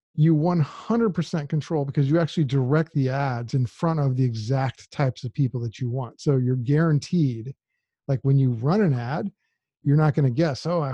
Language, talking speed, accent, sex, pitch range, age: English, 195 wpm, American, male, 135-155 Hz, 40-59